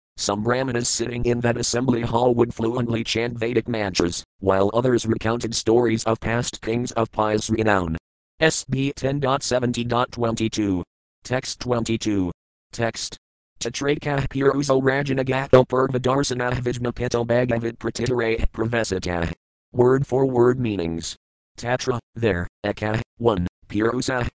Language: English